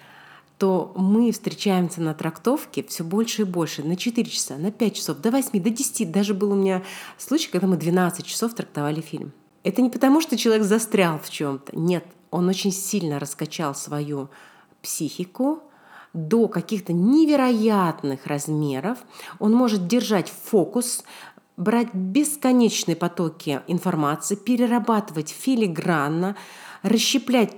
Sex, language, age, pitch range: female, Russian, 30-49, 170-220 Hz